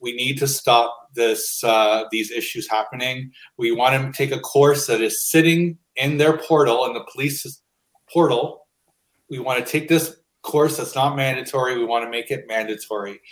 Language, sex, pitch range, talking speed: English, male, 125-155 Hz, 185 wpm